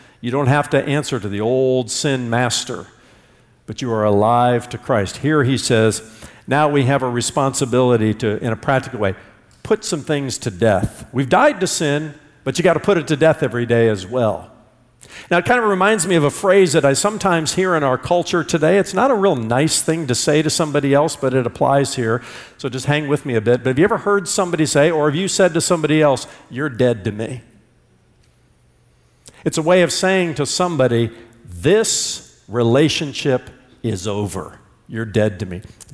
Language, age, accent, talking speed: English, 50-69, American, 205 wpm